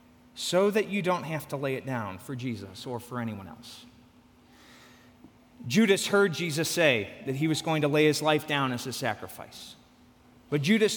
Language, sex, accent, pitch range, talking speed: English, male, American, 125-180 Hz, 180 wpm